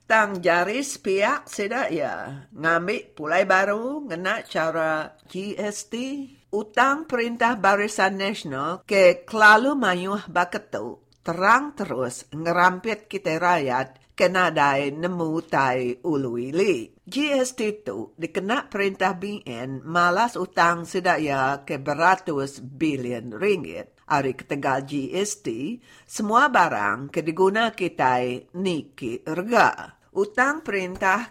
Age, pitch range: 50-69, 150-210 Hz